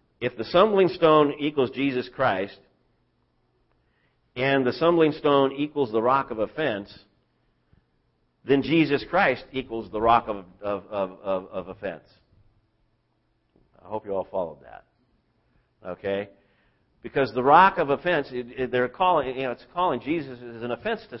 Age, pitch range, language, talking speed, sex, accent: 50-69, 125-175 Hz, English, 145 wpm, male, American